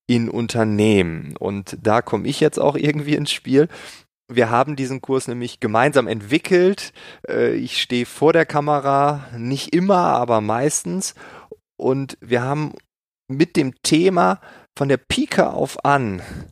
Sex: male